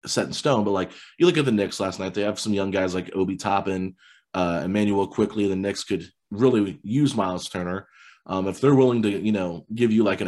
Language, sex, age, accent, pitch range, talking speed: English, male, 30-49, American, 95-110 Hz, 240 wpm